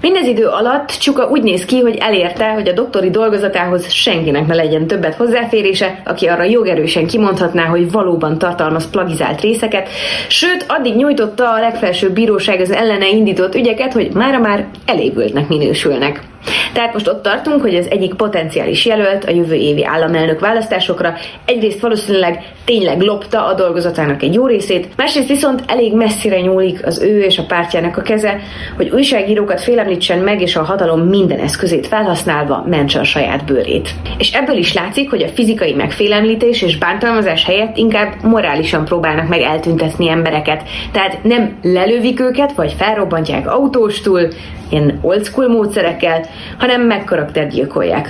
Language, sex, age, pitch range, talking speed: Hungarian, female, 30-49, 175-225 Hz, 150 wpm